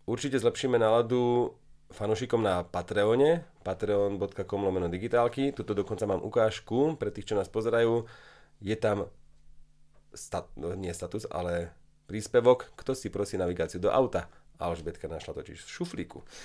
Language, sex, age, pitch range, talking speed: English, male, 30-49, 90-120 Hz, 130 wpm